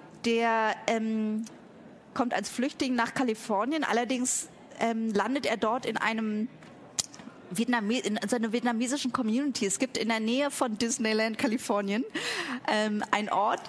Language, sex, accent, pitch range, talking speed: German, female, German, 205-245 Hz, 125 wpm